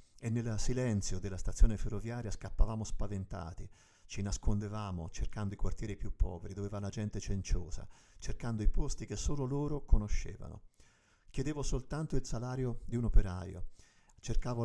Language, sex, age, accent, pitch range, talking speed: Italian, male, 50-69, native, 100-120 Hz, 145 wpm